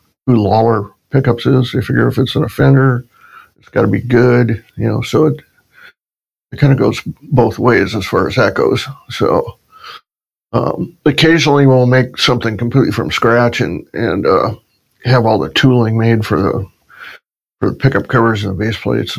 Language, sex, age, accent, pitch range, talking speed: English, male, 60-79, American, 110-125 Hz, 175 wpm